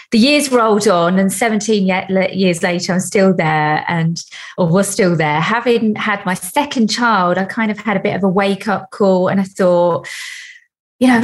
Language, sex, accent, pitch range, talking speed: English, female, British, 175-225 Hz, 200 wpm